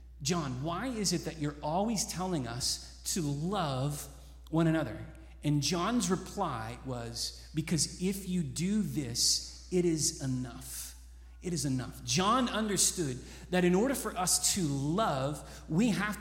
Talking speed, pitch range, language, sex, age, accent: 145 wpm, 145-210 Hz, English, male, 30-49, American